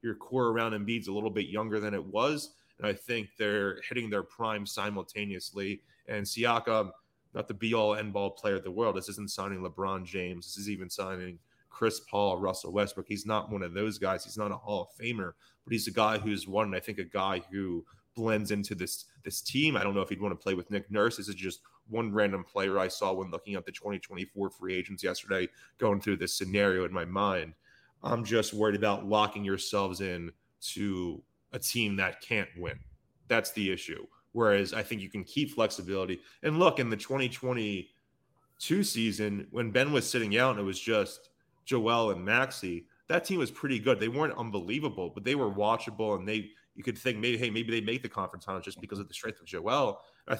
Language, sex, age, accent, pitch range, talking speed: English, male, 20-39, American, 100-115 Hz, 215 wpm